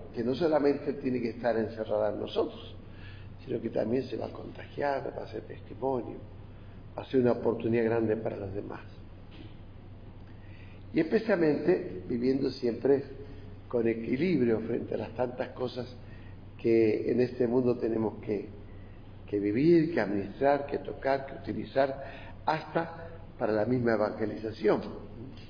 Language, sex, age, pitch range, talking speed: Spanish, male, 50-69, 100-125 Hz, 140 wpm